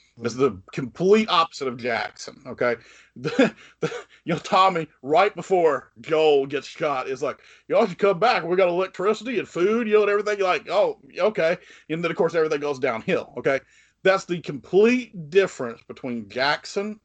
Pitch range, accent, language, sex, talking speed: 130-200 Hz, American, English, male, 170 wpm